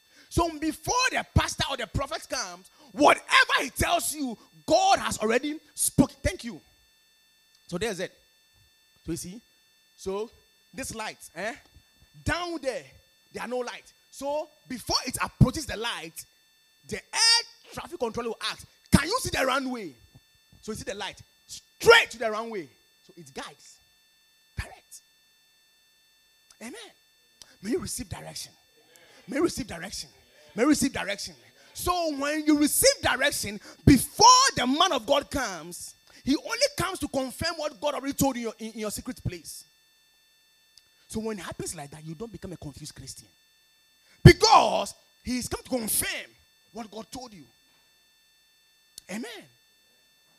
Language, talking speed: English, 145 wpm